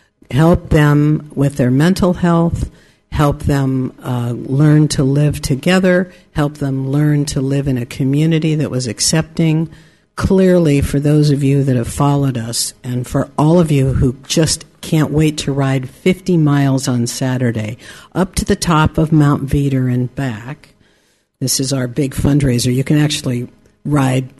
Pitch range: 130-155 Hz